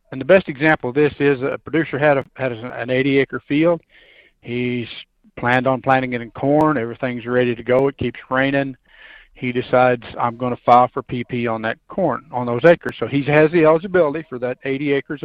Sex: male